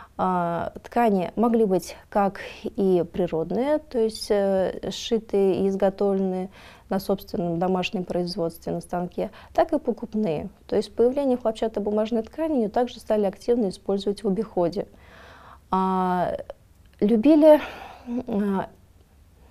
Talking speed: 100 wpm